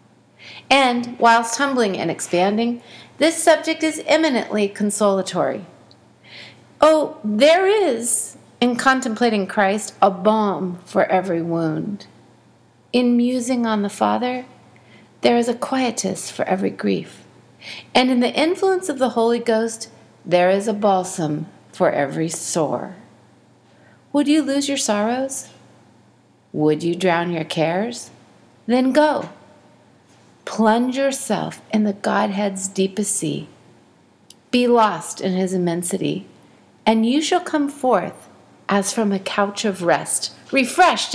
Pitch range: 190-255 Hz